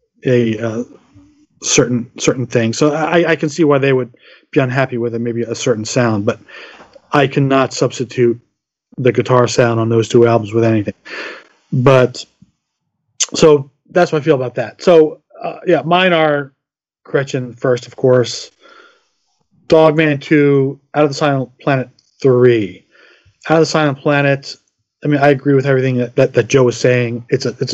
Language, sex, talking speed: English, male, 170 wpm